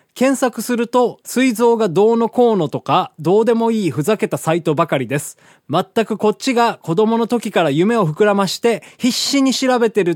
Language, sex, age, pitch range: Japanese, male, 20-39, 155-230 Hz